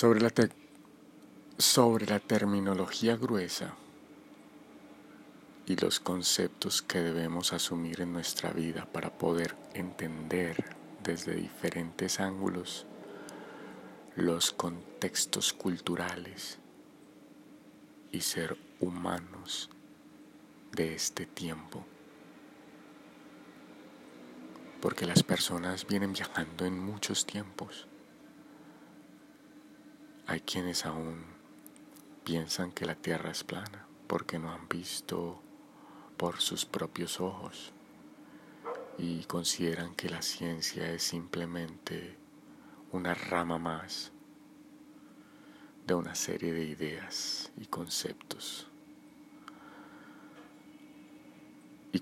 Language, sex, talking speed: Spanish, male, 85 wpm